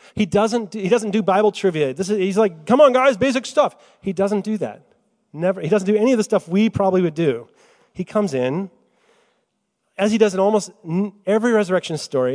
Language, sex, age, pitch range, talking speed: English, male, 30-49, 140-210 Hz, 210 wpm